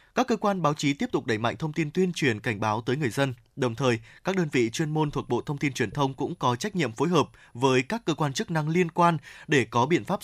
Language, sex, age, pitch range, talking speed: Vietnamese, male, 20-39, 130-175 Hz, 285 wpm